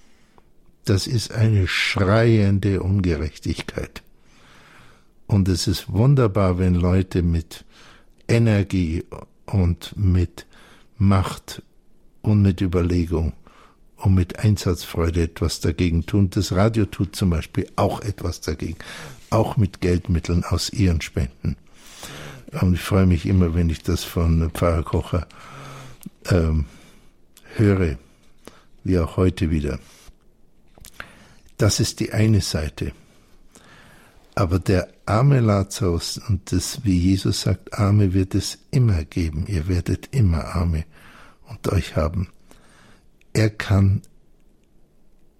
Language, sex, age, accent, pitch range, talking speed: German, male, 60-79, German, 85-100 Hz, 110 wpm